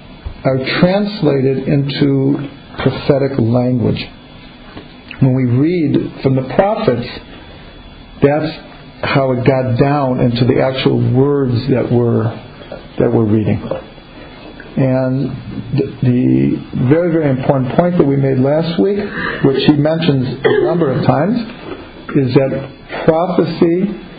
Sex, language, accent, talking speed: male, English, American, 110 wpm